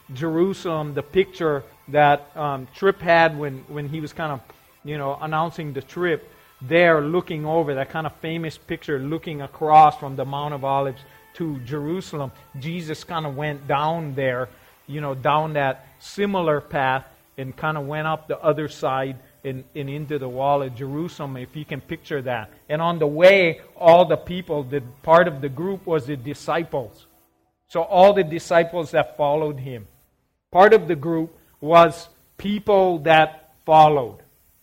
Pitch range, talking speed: 145-170 Hz, 165 wpm